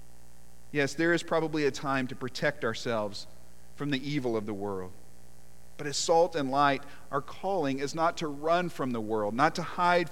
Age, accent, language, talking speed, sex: 40-59, American, English, 190 wpm, male